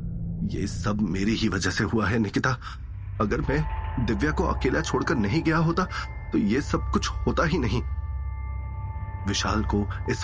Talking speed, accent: 165 wpm, native